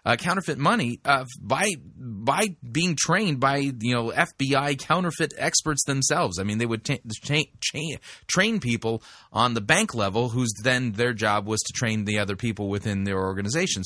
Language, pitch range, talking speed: English, 110-150 Hz, 180 wpm